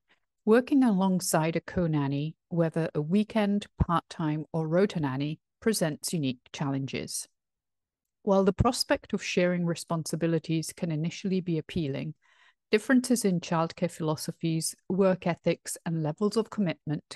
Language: English